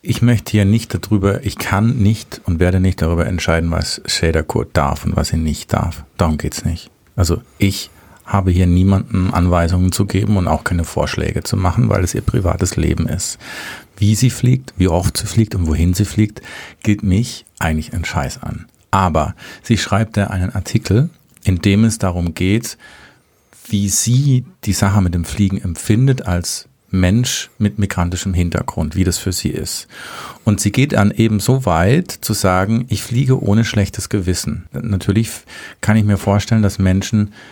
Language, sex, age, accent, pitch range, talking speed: German, male, 50-69, German, 90-110 Hz, 180 wpm